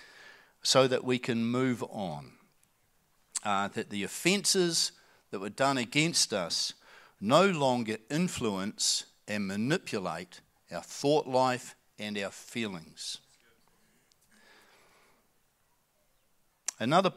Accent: Australian